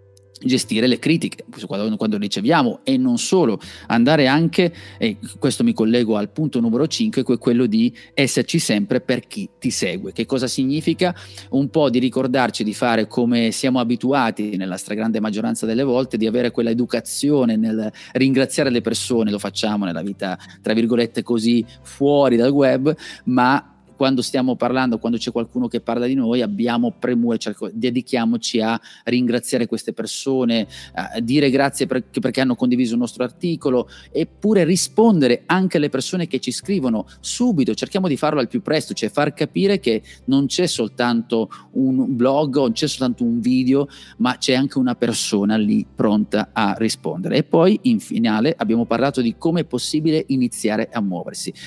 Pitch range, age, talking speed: 115-140 Hz, 30-49, 165 wpm